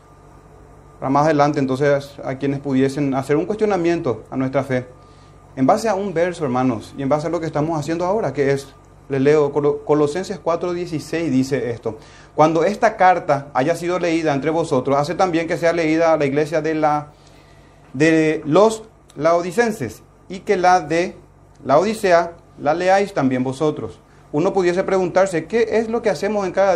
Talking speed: 170 wpm